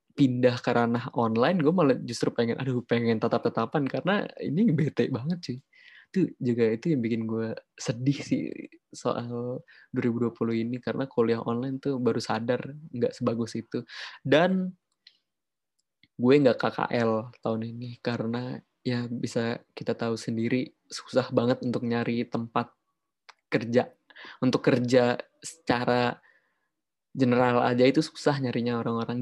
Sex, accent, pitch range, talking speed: male, native, 115-130 Hz, 130 wpm